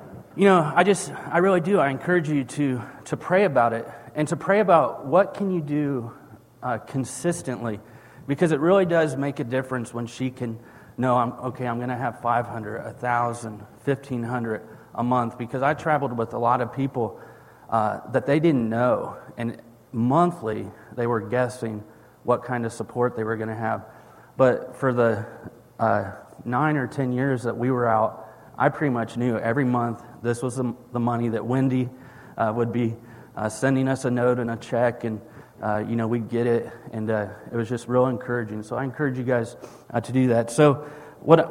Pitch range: 115-135 Hz